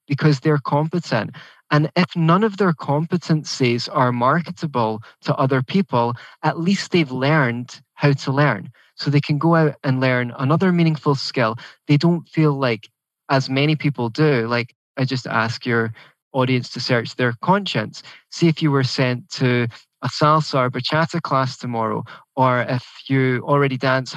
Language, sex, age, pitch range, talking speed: English, male, 20-39, 125-155 Hz, 165 wpm